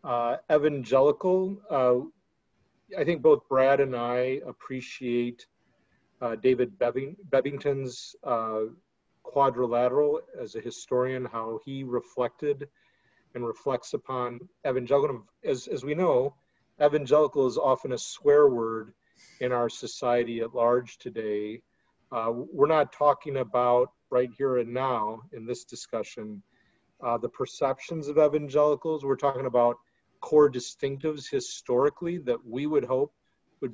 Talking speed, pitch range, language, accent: 125 wpm, 120-155 Hz, English, American